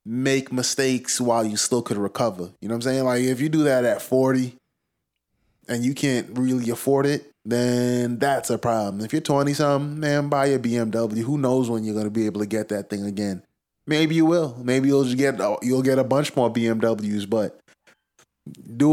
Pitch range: 115-135 Hz